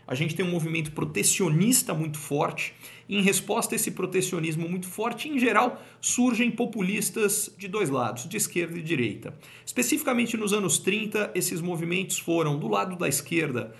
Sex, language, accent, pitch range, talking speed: male, Portuguese, Brazilian, 135-190 Hz, 165 wpm